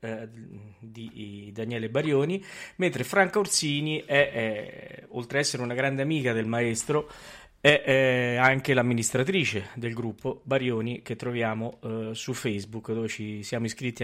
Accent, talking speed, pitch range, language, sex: native, 145 wpm, 115-145 Hz, Italian, male